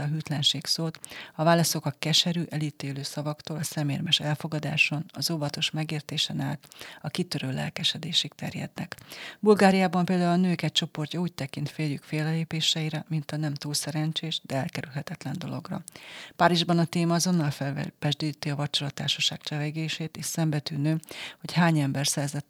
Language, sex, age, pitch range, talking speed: Hungarian, female, 40-59, 145-170 Hz, 135 wpm